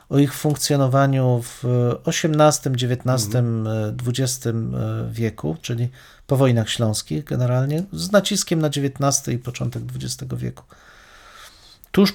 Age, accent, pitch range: 40-59, native, 115-135 Hz